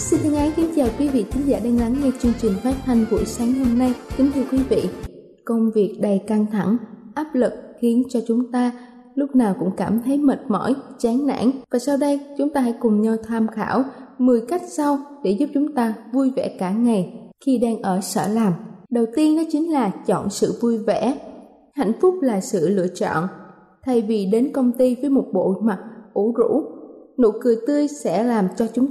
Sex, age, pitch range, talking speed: female, 20-39, 215-270 Hz, 210 wpm